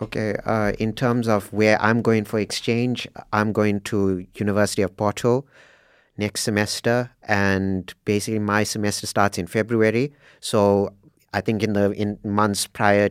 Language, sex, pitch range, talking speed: English, male, 100-110 Hz, 150 wpm